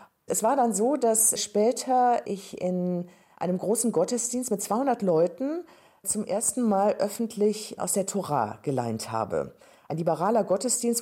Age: 40-59